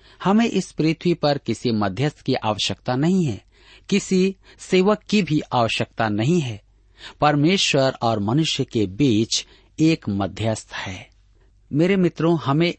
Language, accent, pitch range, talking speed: Hindi, native, 105-155 Hz, 130 wpm